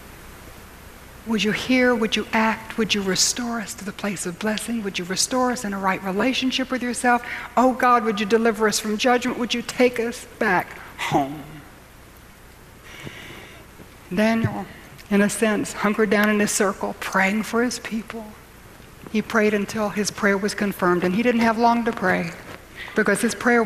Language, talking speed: English, 175 wpm